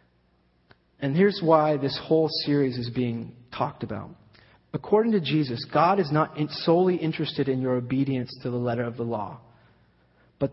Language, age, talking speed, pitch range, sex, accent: English, 30-49, 160 wpm, 115-150 Hz, male, American